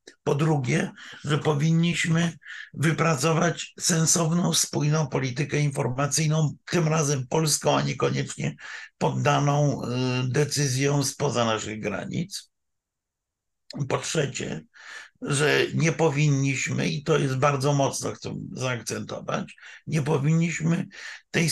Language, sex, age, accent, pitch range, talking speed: Polish, male, 50-69, native, 140-165 Hz, 95 wpm